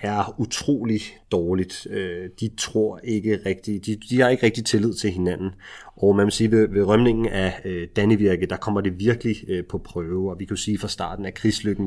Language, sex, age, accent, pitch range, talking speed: English, male, 30-49, Danish, 100-125 Hz, 190 wpm